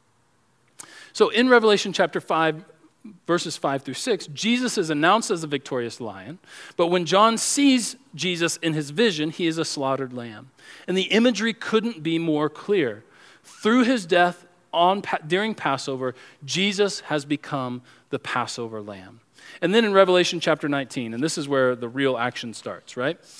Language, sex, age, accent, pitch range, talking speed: English, male, 40-59, American, 145-190 Hz, 160 wpm